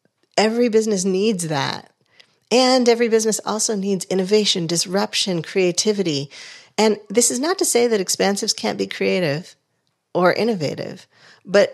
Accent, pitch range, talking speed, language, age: American, 160-200 Hz, 135 wpm, English, 50-69